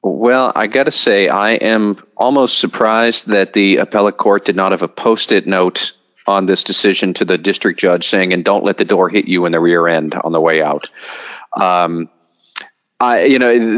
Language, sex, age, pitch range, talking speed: English, male, 40-59, 90-110 Hz, 200 wpm